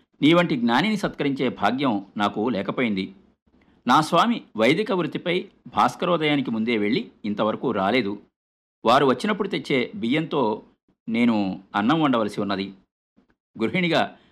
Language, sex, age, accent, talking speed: Telugu, male, 50-69, native, 105 wpm